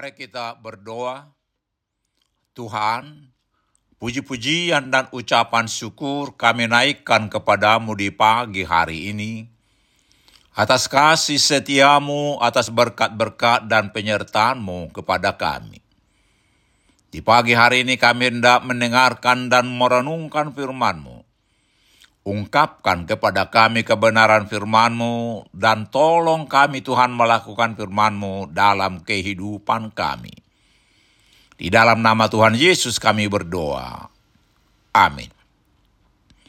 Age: 60-79